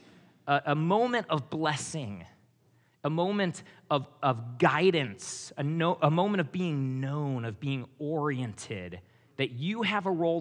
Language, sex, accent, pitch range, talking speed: English, male, American, 135-190 Hz, 135 wpm